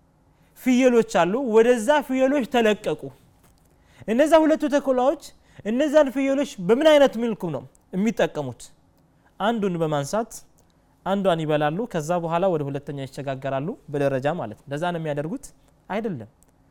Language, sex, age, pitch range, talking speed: Amharic, male, 30-49, 145-245 Hz, 105 wpm